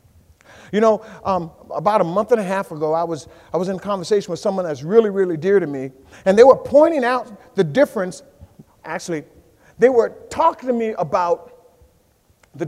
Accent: American